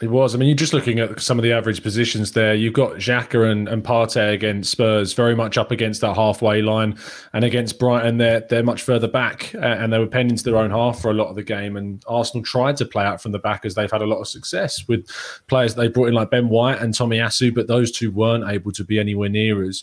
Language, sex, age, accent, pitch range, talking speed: English, male, 20-39, British, 110-125 Hz, 270 wpm